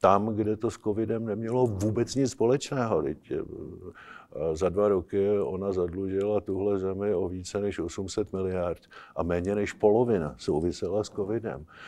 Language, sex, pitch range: Czech, male, 90-105 Hz